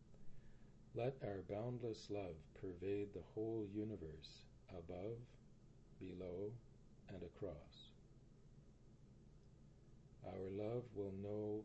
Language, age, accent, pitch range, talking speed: English, 50-69, American, 90-110 Hz, 80 wpm